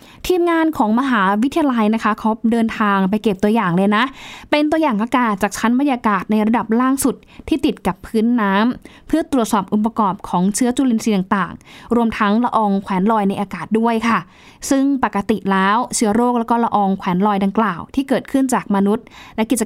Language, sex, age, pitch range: Thai, female, 20-39, 210-270 Hz